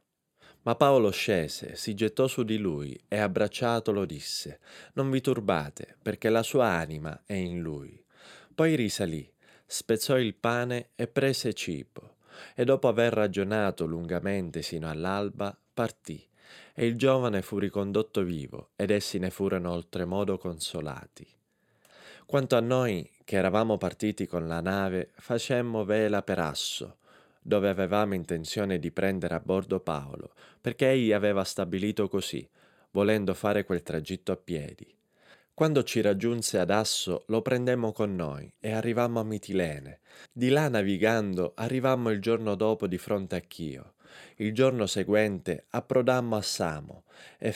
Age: 30-49